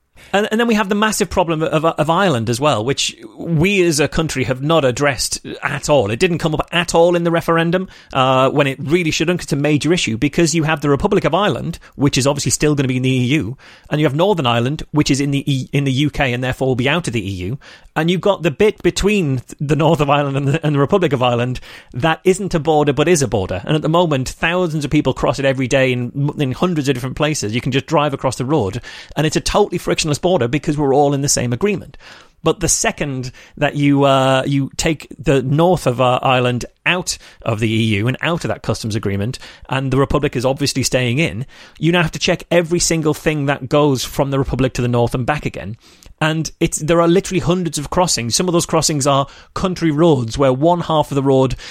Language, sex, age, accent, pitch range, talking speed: English, male, 30-49, British, 130-170 Hz, 245 wpm